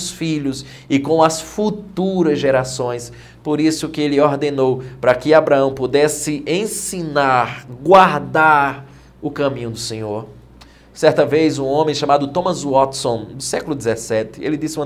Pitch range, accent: 120-150 Hz, Brazilian